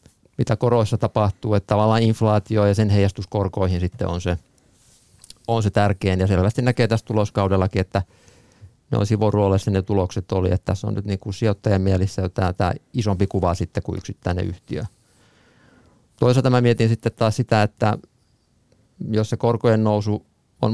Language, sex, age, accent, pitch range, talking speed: Finnish, male, 50-69, native, 100-115 Hz, 160 wpm